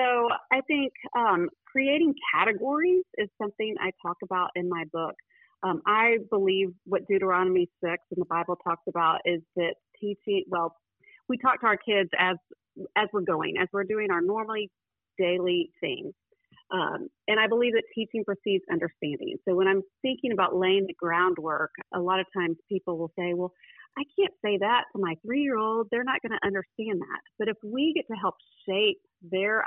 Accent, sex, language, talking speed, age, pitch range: American, female, English, 180 wpm, 40-59, 180-230 Hz